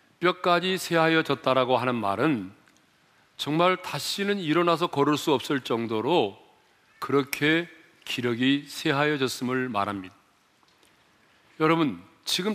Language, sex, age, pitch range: Korean, male, 40-59, 130-165 Hz